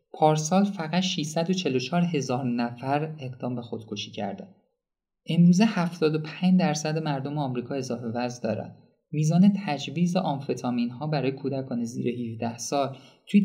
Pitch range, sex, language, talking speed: 125-175 Hz, male, Persian, 120 wpm